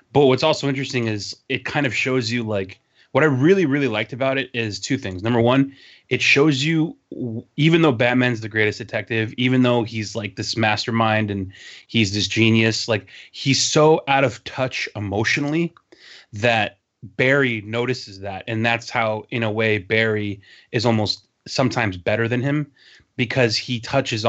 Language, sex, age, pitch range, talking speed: English, male, 30-49, 105-125 Hz, 170 wpm